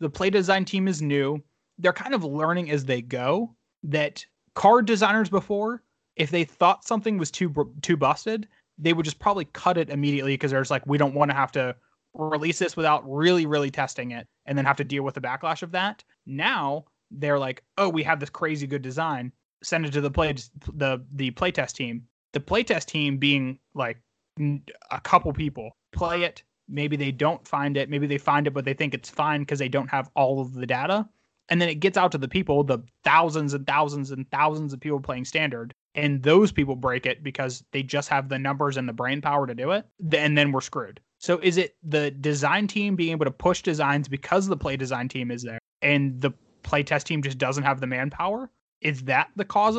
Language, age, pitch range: English, 20-39, 135-175 Hz